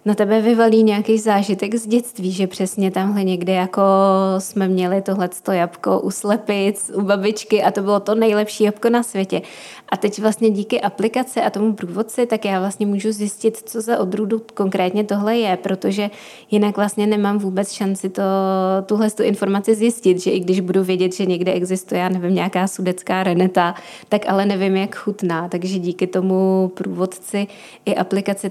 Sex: female